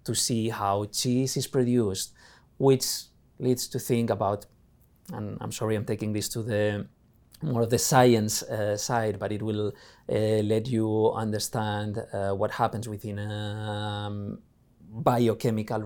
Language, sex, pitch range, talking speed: Arabic, male, 105-120 Hz, 145 wpm